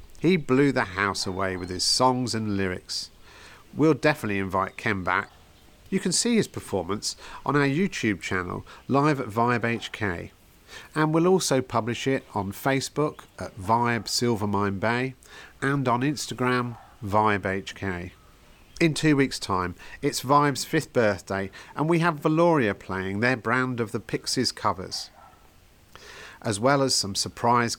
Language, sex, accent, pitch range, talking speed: English, male, British, 100-145 Hz, 145 wpm